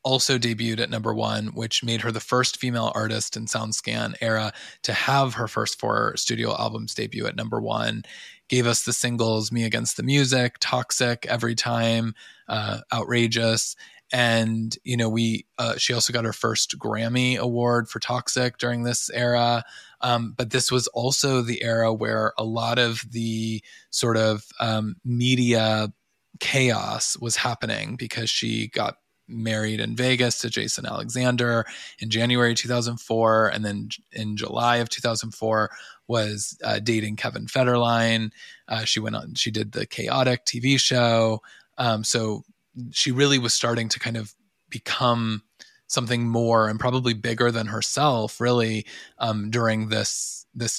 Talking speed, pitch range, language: 155 wpm, 110-125 Hz, English